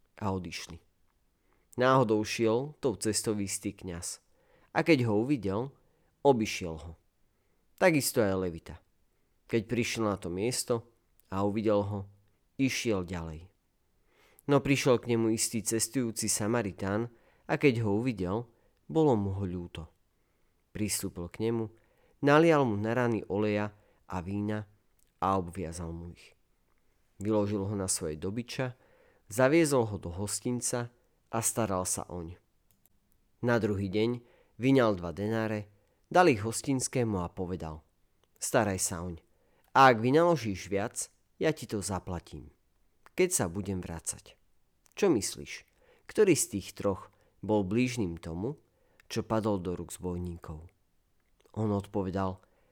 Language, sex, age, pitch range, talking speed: Slovak, male, 40-59, 90-115 Hz, 125 wpm